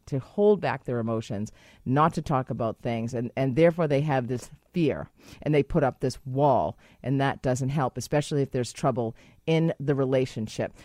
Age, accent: 40-59, American